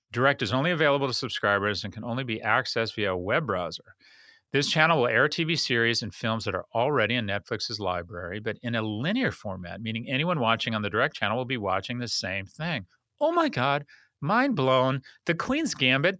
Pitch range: 105-165 Hz